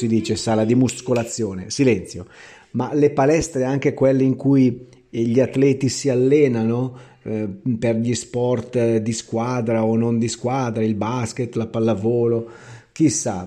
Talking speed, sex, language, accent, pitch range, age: 145 wpm, male, Italian, native, 110-130 Hz, 30-49